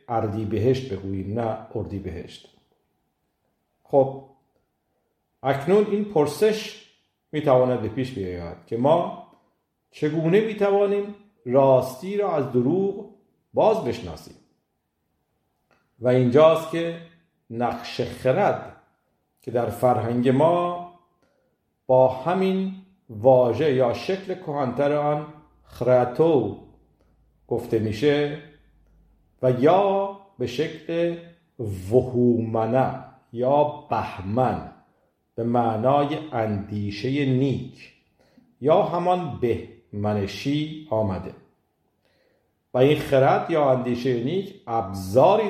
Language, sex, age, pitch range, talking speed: Persian, male, 50-69, 115-155 Hz, 85 wpm